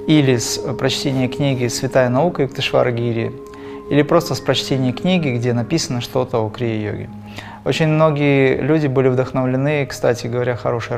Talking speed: 150 wpm